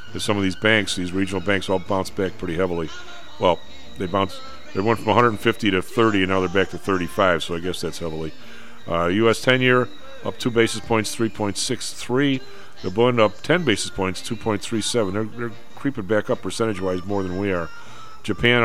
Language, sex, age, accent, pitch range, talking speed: English, male, 40-59, American, 95-115 Hz, 185 wpm